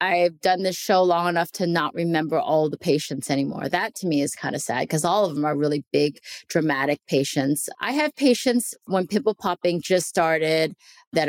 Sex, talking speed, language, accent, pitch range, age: female, 200 wpm, English, American, 160-205 Hz, 30-49